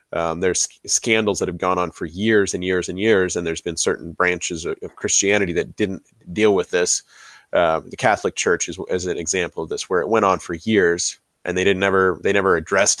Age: 30-49